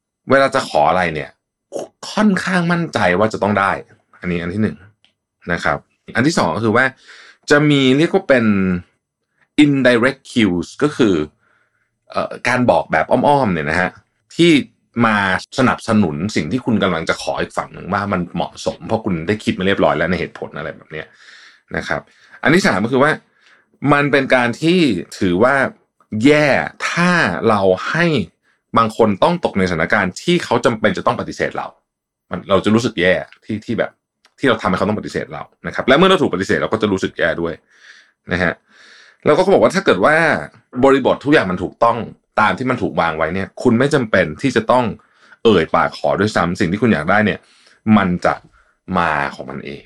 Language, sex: Thai, male